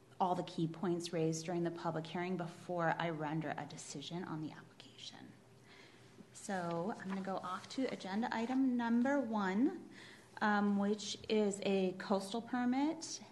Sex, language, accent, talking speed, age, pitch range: female, English, American, 150 wpm, 30-49, 175-210 Hz